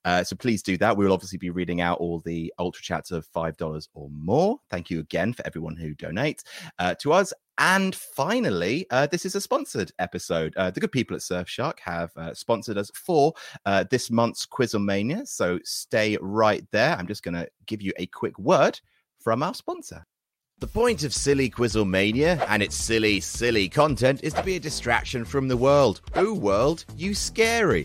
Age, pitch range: 30-49, 100-155 Hz